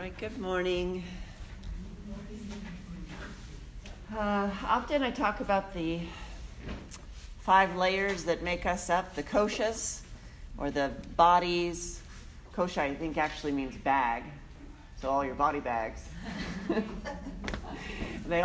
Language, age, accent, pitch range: English, 40-59, American, 135-185 Hz